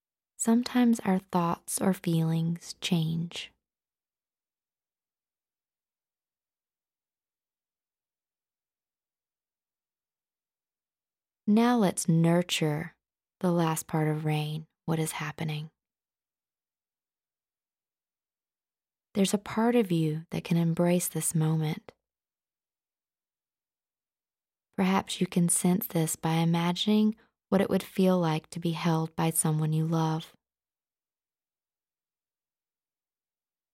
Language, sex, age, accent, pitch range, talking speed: English, female, 20-39, American, 160-190 Hz, 80 wpm